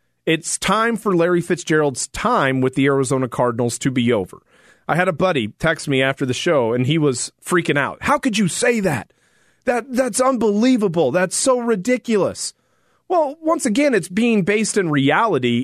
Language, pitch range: English, 145-200 Hz